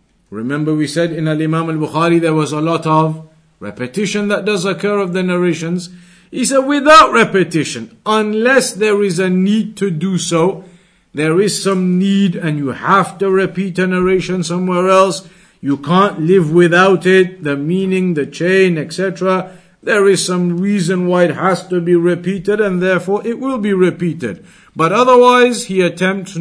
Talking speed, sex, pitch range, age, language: 165 wpm, male, 170-210 Hz, 50-69, English